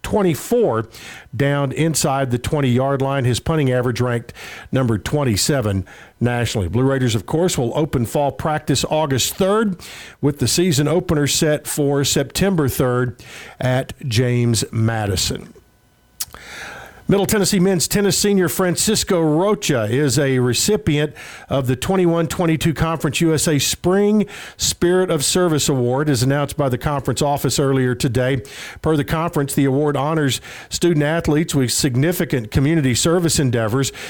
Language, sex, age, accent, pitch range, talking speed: English, male, 50-69, American, 130-165 Hz, 130 wpm